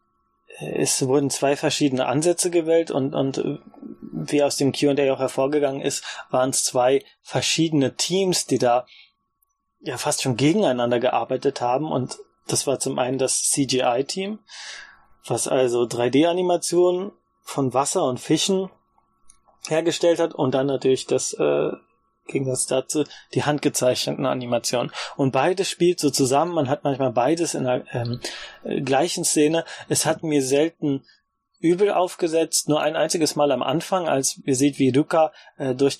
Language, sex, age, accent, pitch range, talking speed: German, male, 20-39, German, 130-170 Hz, 150 wpm